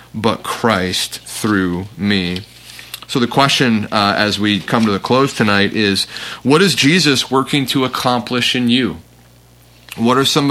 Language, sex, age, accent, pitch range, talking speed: English, male, 30-49, American, 105-125 Hz, 155 wpm